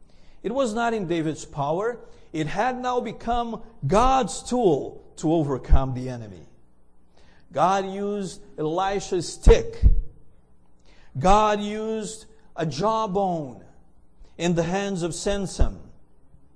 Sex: male